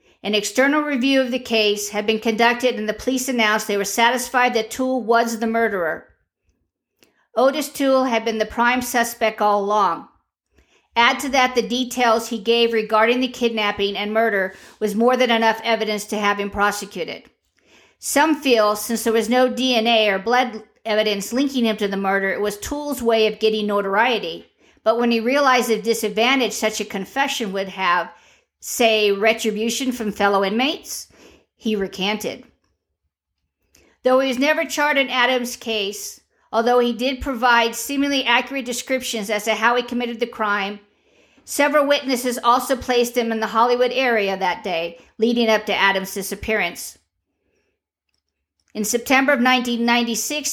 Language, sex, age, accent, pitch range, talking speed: English, female, 50-69, American, 210-250 Hz, 160 wpm